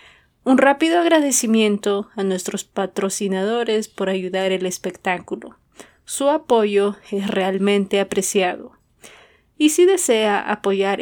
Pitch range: 195-235 Hz